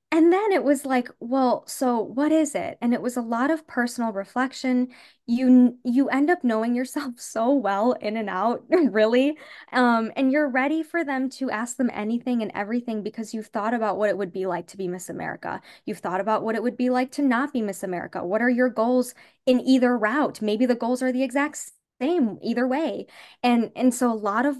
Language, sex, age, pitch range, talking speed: English, female, 10-29, 210-255 Hz, 220 wpm